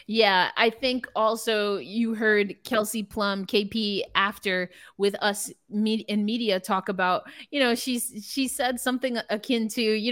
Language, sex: English, female